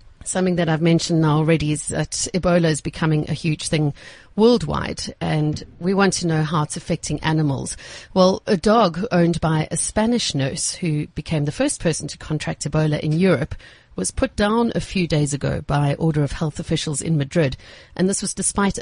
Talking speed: 190 wpm